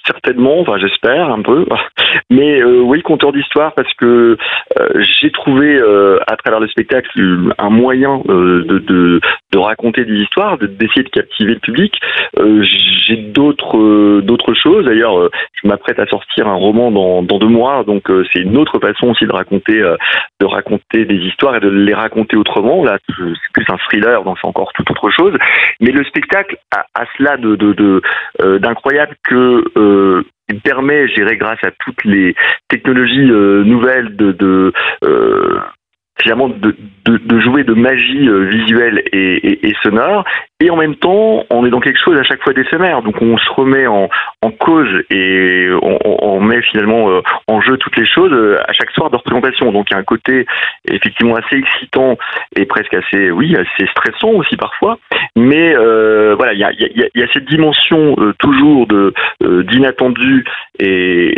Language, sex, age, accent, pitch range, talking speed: French, male, 40-59, French, 100-135 Hz, 190 wpm